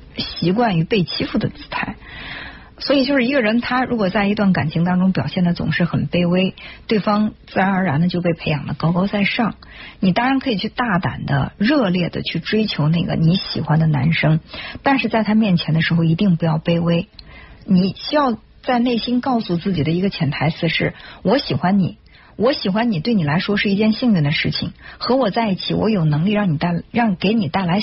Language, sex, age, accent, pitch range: Chinese, female, 50-69, native, 165-225 Hz